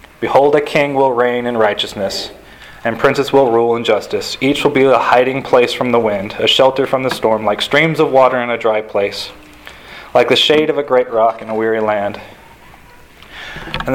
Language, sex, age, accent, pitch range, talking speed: English, male, 30-49, American, 110-135 Hz, 200 wpm